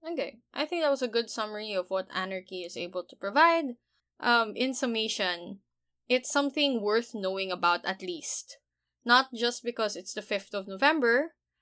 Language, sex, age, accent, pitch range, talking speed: English, female, 20-39, Filipino, 195-245 Hz, 170 wpm